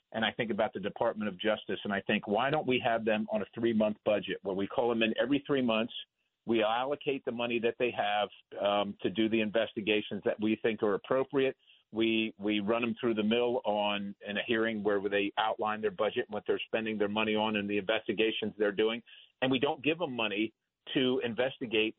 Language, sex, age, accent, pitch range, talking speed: English, male, 50-69, American, 110-140 Hz, 220 wpm